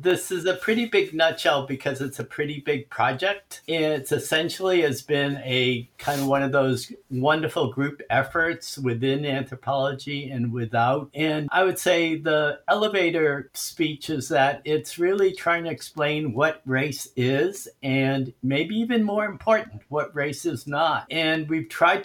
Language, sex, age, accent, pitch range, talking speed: English, male, 60-79, American, 130-155 Hz, 160 wpm